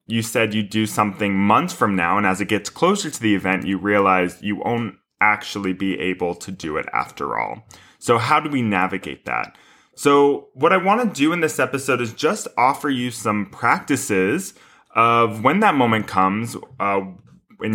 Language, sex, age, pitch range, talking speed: English, male, 20-39, 95-130 Hz, 190 wpm